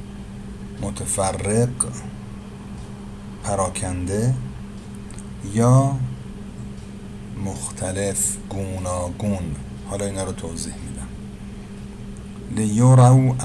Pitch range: 95-105 Hz